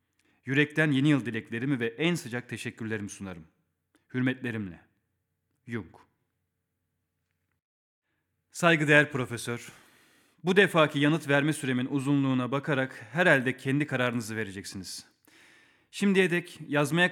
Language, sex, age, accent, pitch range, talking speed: Turkish, male, 40-59, native, 120-155 Hz, 95 wpm